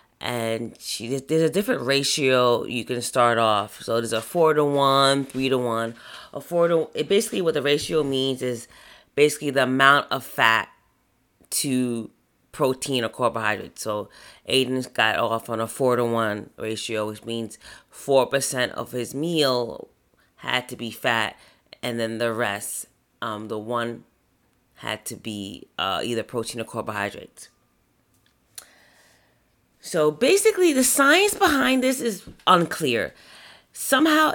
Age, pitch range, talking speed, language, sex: 30-49, 120-160 Hz, 145 wpm, English, female